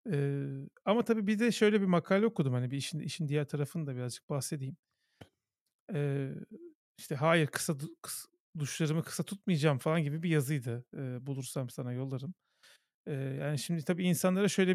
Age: 40-59